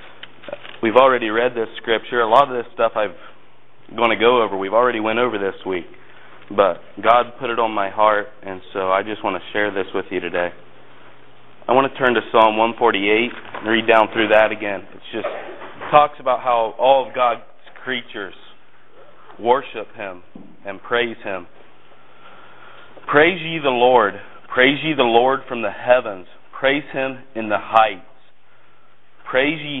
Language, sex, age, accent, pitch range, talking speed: English, male, 30-49, American, 110-135 Hz, 170 wpm